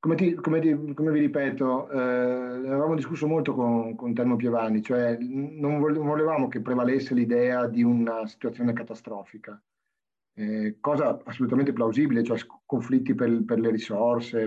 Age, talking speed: 30-49, 140 wpm